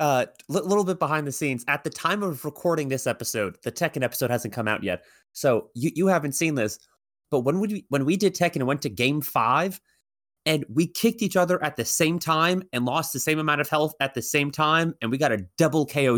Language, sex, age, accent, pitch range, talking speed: English, male, 30-49, American, 135-185 Hz, 245 wpm